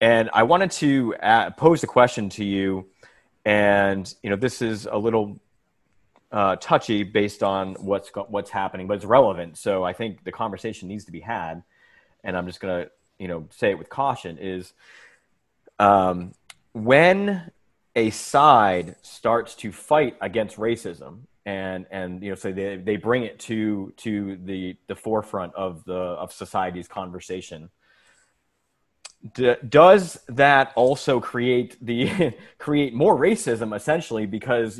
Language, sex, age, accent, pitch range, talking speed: English, male, 30-49, American, 95-115 Hz, 145 wpm